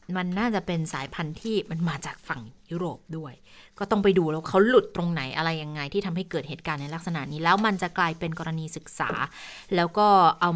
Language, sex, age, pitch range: Thai, female, 20-39, 170-235 Hz